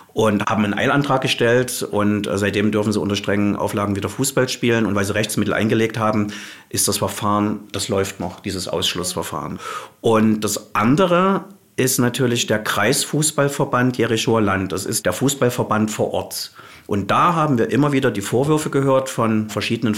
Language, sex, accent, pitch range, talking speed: German, male, German, 105-125 Hz, 165 wpm